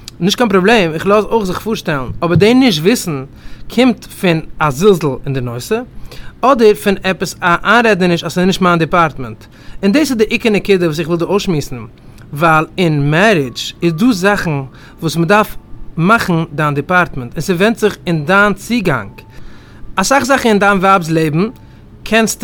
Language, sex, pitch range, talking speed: English, male, 145-200 Hz, 145 wpm